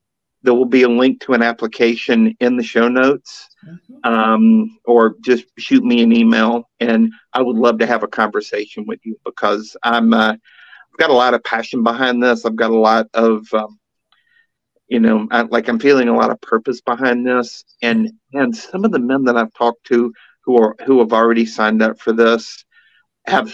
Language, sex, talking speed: English, male, 195 wpm